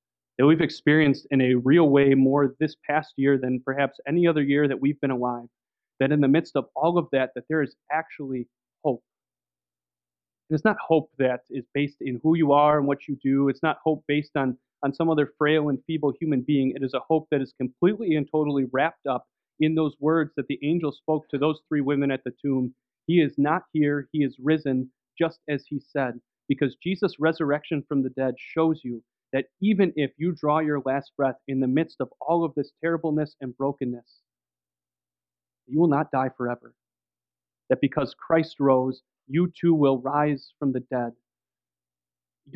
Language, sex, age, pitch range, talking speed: English, male, 30-49, 130-155 Hz, 195 wpm